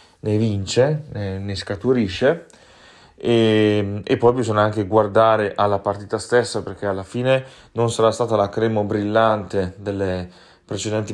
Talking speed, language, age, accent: 130 wpm, Italian, 30-49, native